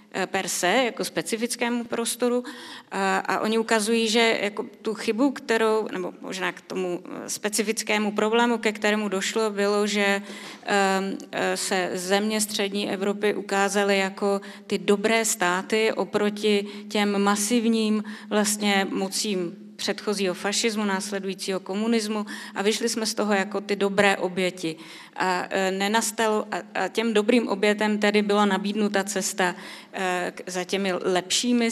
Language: Czech